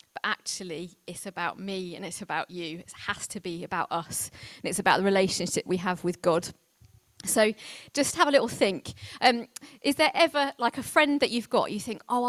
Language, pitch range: English, 195-250 Hz